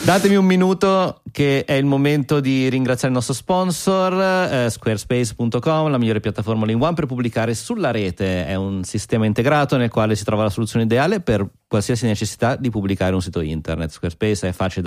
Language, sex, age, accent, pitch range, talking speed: Italian, male, 30-49, native, 95-125 Hz, 180 wpm